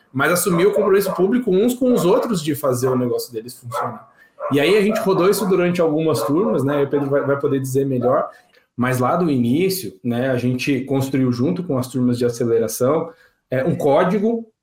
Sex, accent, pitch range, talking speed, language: male, Brazilian, 125-175 Hz, 200 wpm, Portuguese